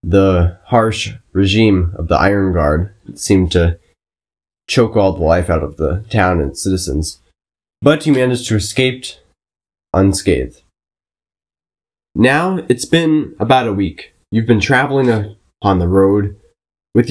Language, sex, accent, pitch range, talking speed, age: English, male, American, 90-110 Hz, 140 wpm, 20-39